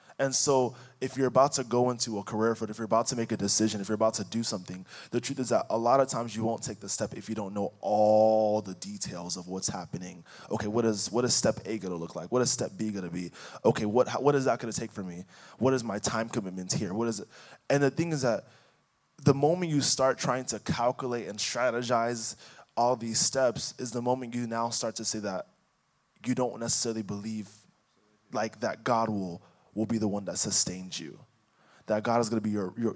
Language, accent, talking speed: English, American, 240 wpm